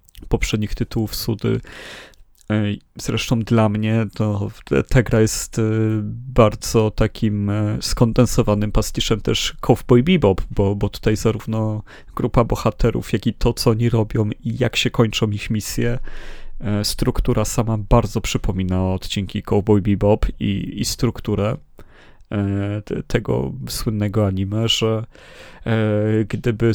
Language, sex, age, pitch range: Polish, male, 30-49, 105-115 Hz